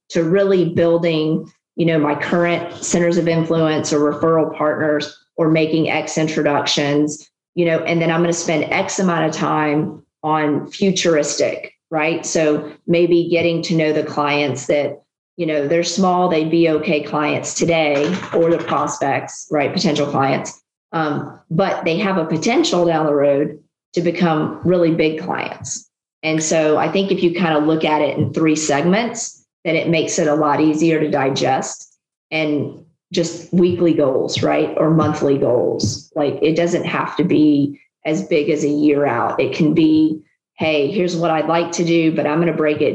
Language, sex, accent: English, female, American